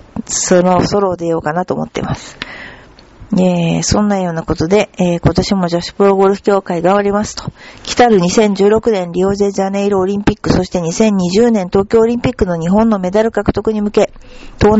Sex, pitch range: female, 175-205 Hz